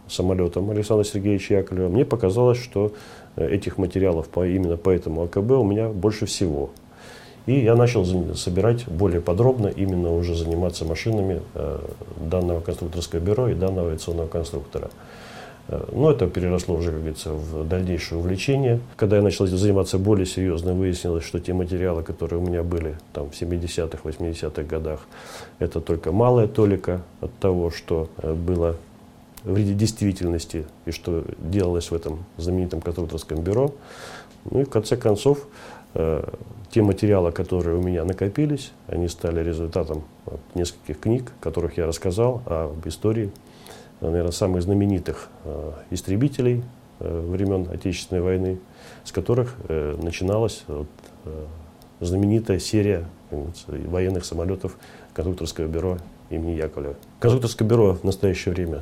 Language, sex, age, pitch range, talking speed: Russian, male, 40-59, 85-105 Hz, 125 wpm